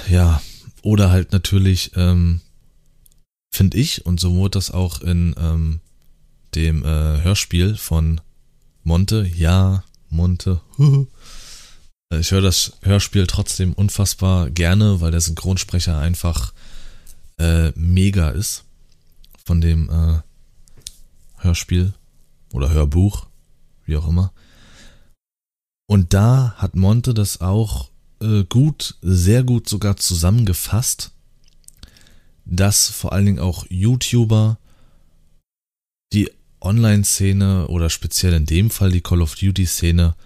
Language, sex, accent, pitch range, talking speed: German, male, German, 80-100 Hz, 105 wpm